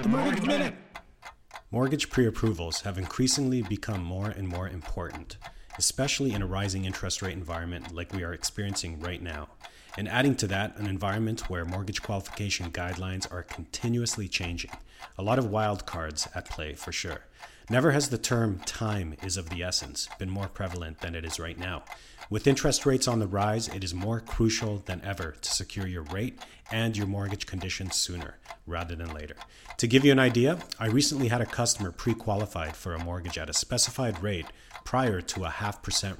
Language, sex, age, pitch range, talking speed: English, male, 30-49, 85-115 Hz, 185 wpm